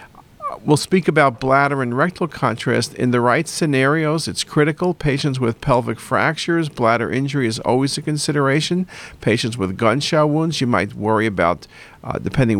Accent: American